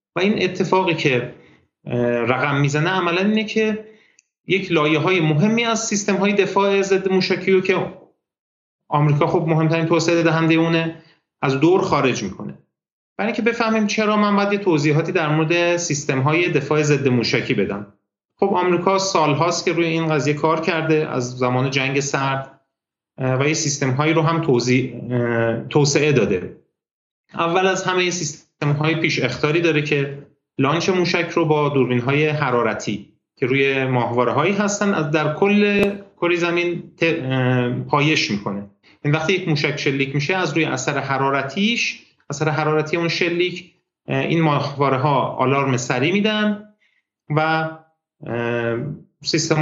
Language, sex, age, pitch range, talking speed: Persian, male, 30-49, 140-185 Hz, 140 wpm